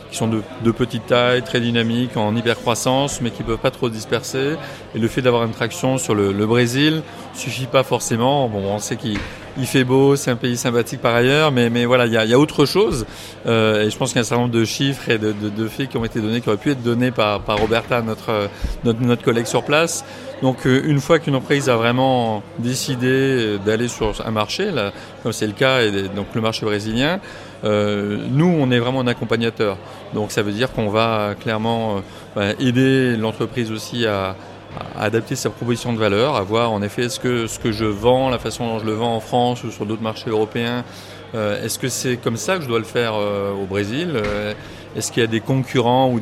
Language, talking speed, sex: French, 225 wpm, male